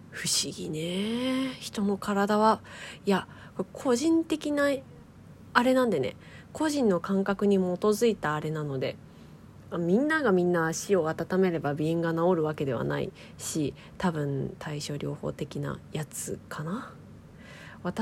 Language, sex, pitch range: Japanese, female, 155-205 Hz